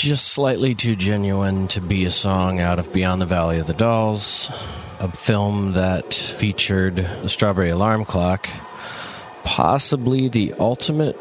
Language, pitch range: English, 95-110 Hz